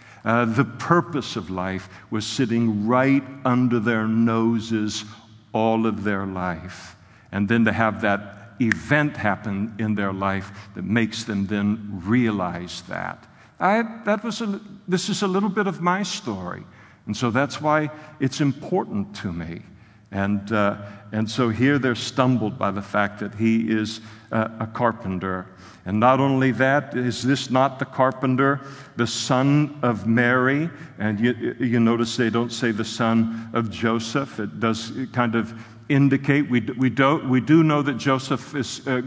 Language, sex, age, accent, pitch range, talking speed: English, male, 60-79, American, 110-130 Hz, 165 wpm